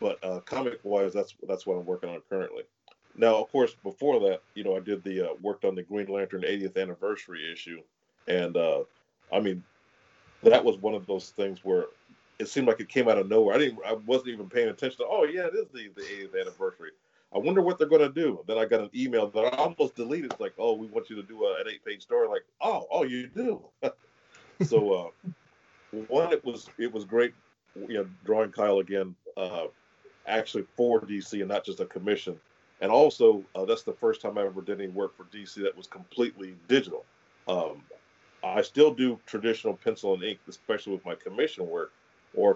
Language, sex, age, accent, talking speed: English, male, 40-59, American, 215 wpm